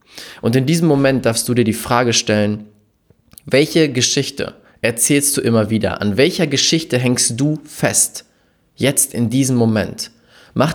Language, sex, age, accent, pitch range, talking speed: German, male, 20-39, German, 115-150 Hz, 150 wpm